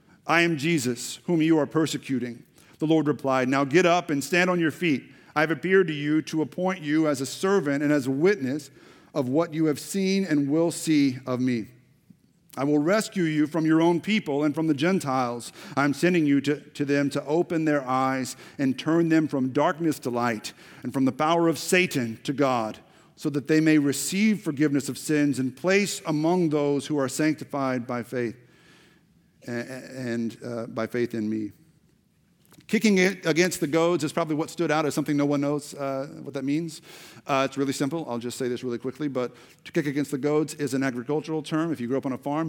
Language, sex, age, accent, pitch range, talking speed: English, male, 50-69, American, 130-160 Hz, 210 wpm